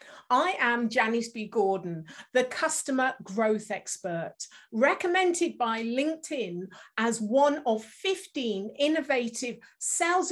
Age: 50-69